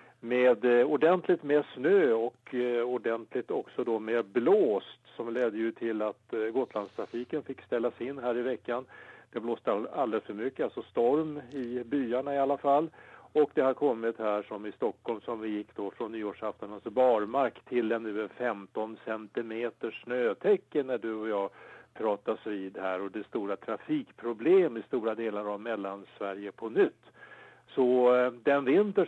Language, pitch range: English, 115-150 Hz